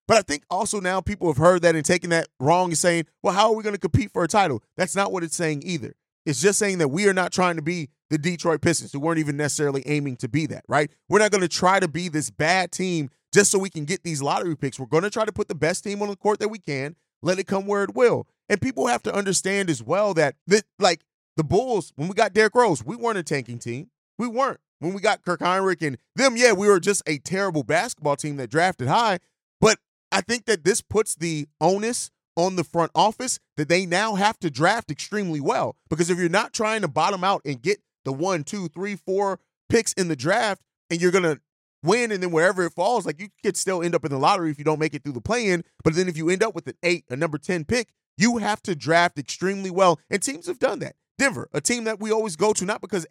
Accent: American